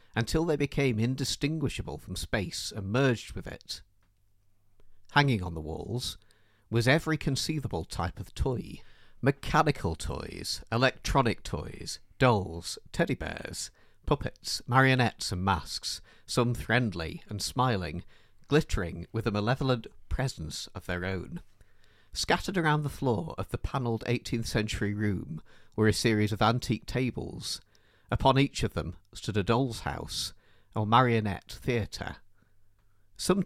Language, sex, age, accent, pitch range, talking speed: English, male, 50-69, British, 95-125 Hz, 125 wpm